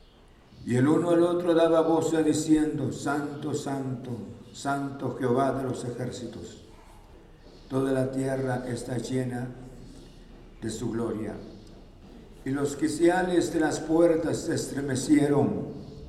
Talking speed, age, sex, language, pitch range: 115 wpm, 60-79, male, Spanish, 120-150 Hz